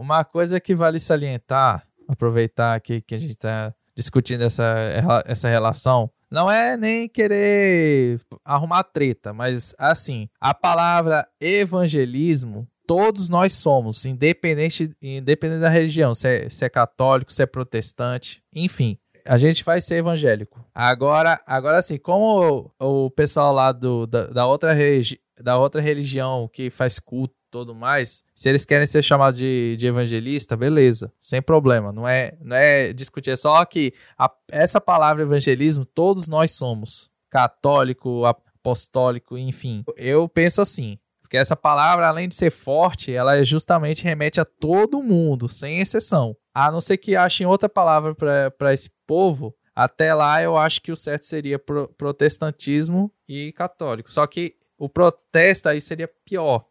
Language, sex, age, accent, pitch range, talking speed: Portuguese, male, 20-39, Brazilian, 125-160 Hz, 150 wpm